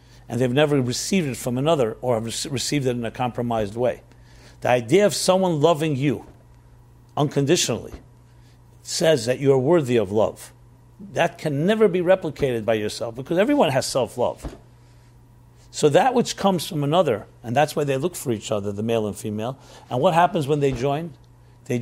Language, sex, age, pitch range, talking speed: English, male, 50-69, 120-155 Hz, 175 wpm